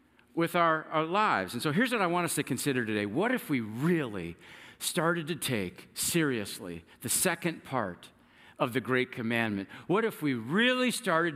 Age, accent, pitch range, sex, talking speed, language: 50-69, American, 125-195 Hz, male, 180 wpm, English